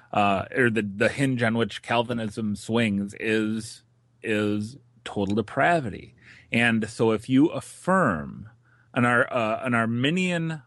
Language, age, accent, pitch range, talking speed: English, 30-49, American, 110-125 Hz, 130 wpm